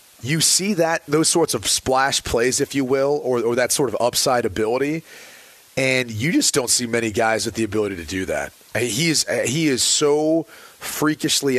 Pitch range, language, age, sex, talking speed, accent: 120-150 Hz, English, 30-49, male, 190 wpm, American